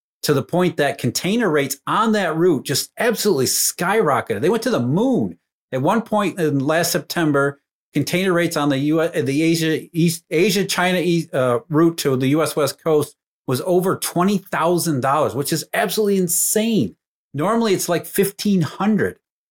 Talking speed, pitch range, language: 175 wpm, 135-180 Hz, English